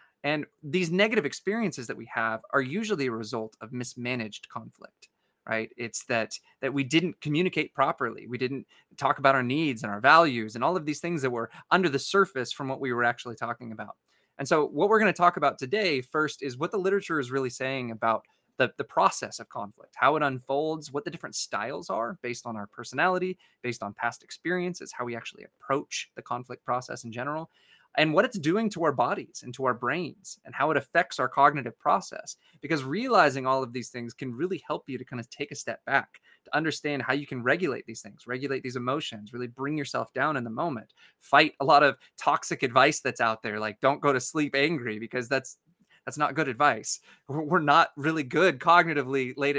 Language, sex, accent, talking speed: English, male, American, 215 wpm